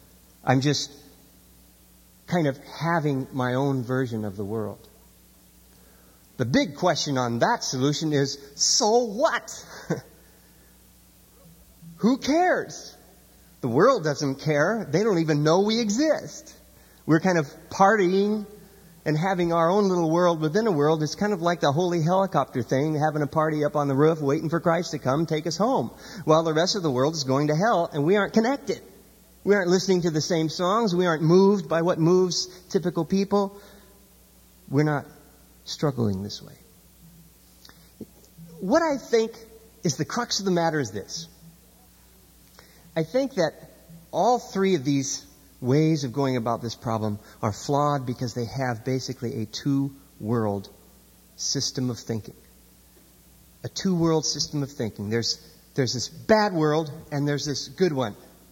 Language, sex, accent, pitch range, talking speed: English, male, American, 130-185 Hz, 155 wpm